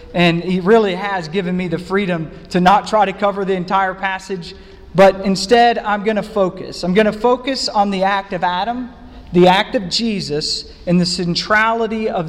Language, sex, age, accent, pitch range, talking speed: English, male, 40-59, American, 165-220 Hz, 190 wpm